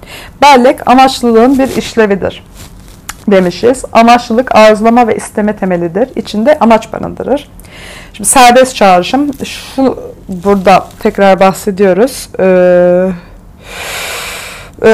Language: Turkish